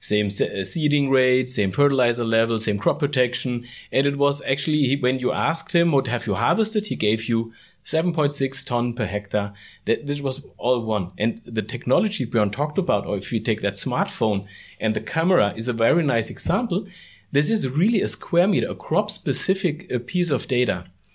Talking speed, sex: 185 wpm, male